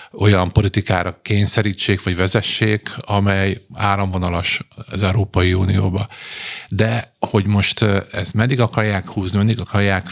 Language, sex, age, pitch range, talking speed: Hungarian, male, 50-69, 95-110 Hz, 115 wpm